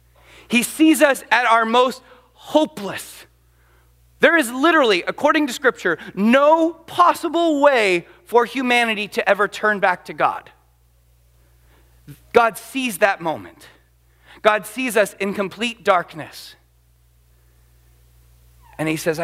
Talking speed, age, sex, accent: 115 wpm, 40-59, male, American